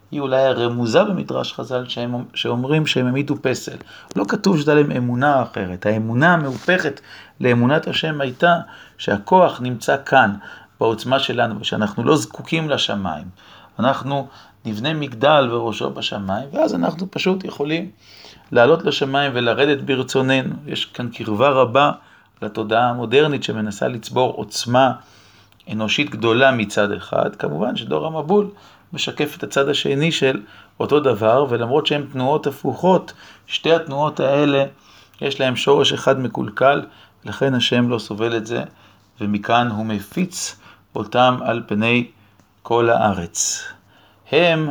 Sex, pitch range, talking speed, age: male, 105-140 Hz, 125 wpm, 40-59